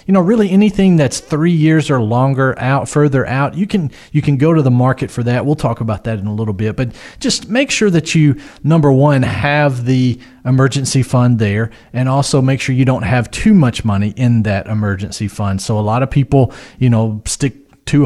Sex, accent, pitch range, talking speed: male, American, 110-140 Hz, 220 wpm